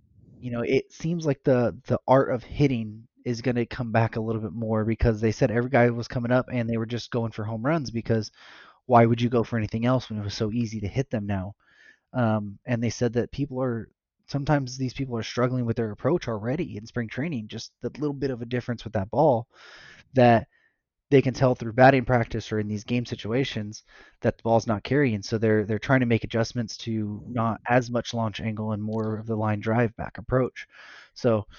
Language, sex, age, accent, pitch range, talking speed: English, male, 20-39, American, 110-125 Hz, 230 wpm